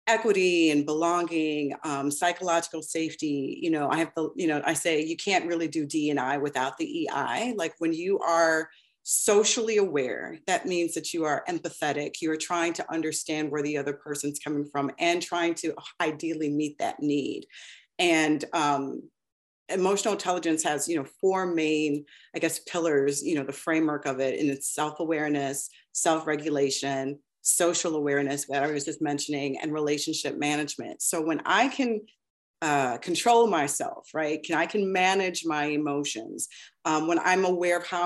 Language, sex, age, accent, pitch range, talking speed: English, female, 30-49, American, 150-175 Hz, 165 wpm